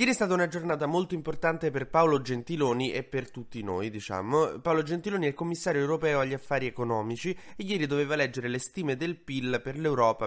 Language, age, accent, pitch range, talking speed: Italian, 20-39, native, 115-155 Hz, 200 wpm